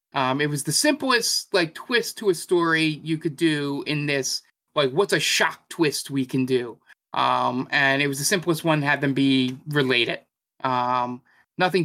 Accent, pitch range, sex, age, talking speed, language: American, 130-165 Hz, male, 30-49, 180 wpm, English